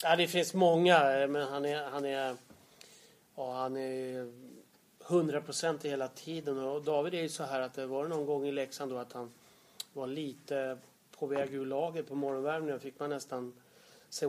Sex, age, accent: male, 30-49, Swedish